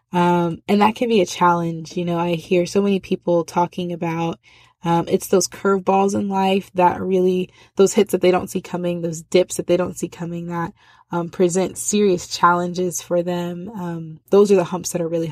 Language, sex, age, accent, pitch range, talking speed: English, female, 20-39, American, 170-185 Hz, 210 wpm